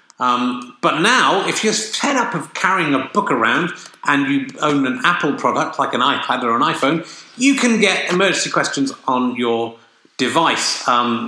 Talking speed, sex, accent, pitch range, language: 175 wpm, male, British, 125-155 Hz, English